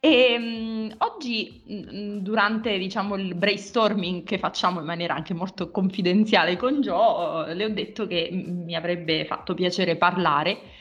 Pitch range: 165-205 Hz